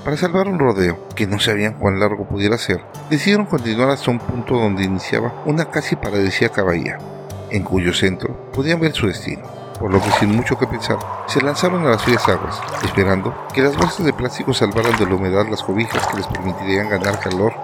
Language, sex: Spanish, male